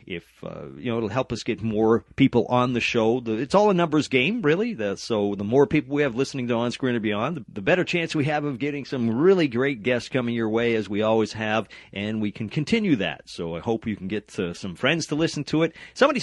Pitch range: 105-145 Hz